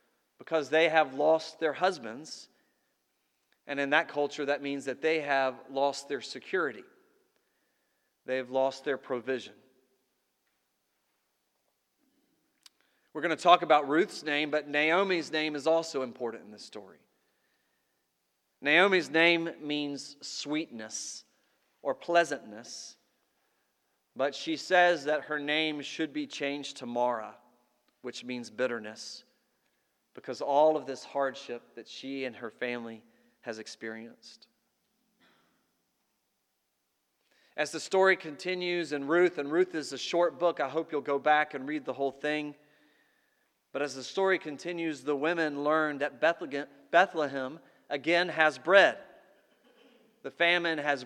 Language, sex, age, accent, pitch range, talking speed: English, male, 40-59, American, 135-165 Hz, 130 wpm